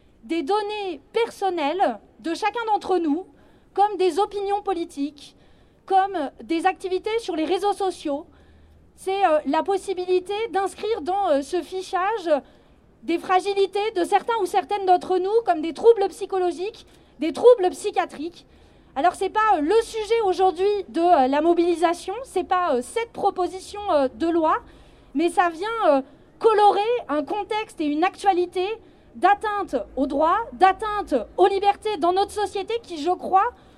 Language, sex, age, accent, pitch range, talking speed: French, female, 30-49, French, 340-410 Hz, 140 wpm